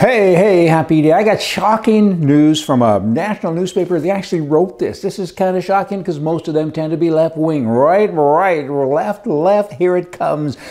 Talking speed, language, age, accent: 205 wpm, English, 60-79, American